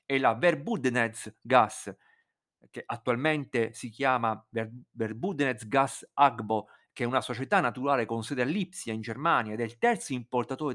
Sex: male